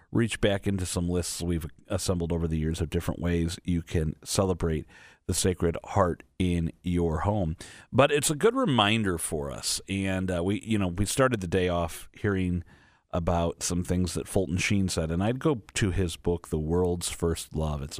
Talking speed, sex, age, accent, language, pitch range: 195 wpm, male, 40-59, American, English, 80-105 Hz